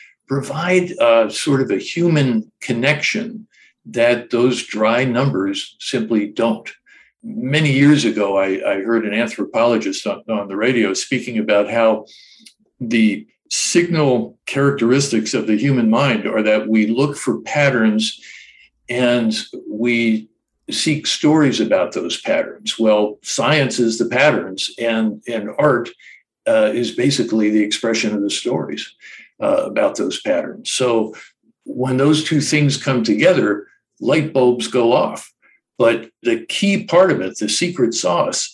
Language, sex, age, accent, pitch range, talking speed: English, male, 60-79, American, 110-175 Hz, 135 wpm